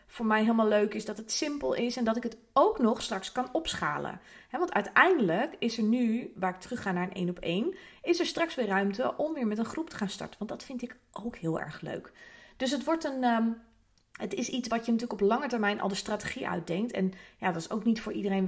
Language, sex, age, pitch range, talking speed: Dutch, female, 30-49, 190-245 Hz, 255 wpm